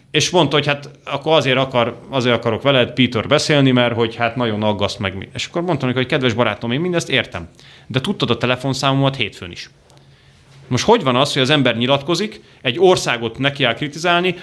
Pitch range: 115-140 Hz